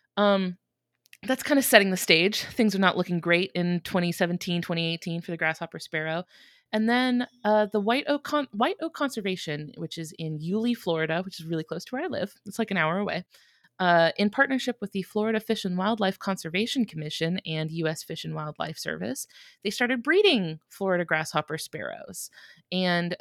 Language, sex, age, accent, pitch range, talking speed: English, female, 30-49, American, 160-205 Hz, 180 wpm